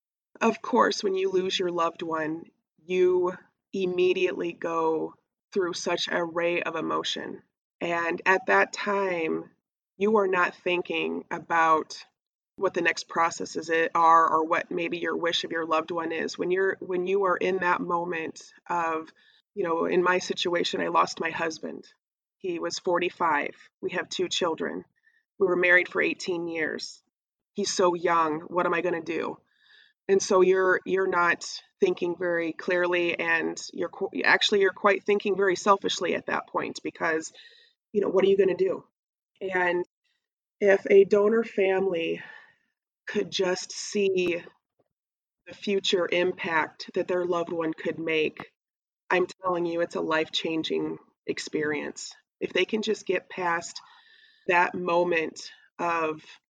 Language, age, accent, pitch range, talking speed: English, 20-39, American, 170-200 Hz, 150 wpm